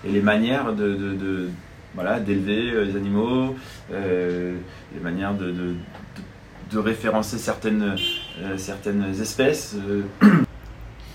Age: 20-39